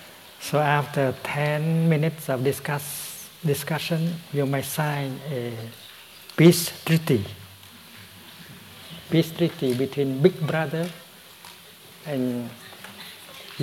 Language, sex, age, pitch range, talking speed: English, male, 60-79, 125-145 Hz, 85 wpm